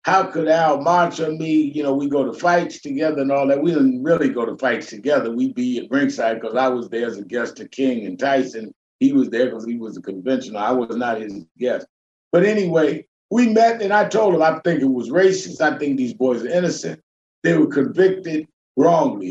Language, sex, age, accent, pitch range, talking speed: English, male, 50-69, American, 130-175 Hz, 230 wpm